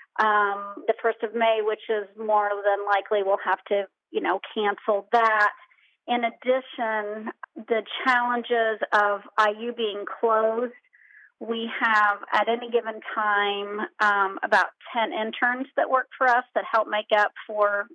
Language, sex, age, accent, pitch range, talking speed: English, female, 40-59, American, 205-240 Hz, 145 wpm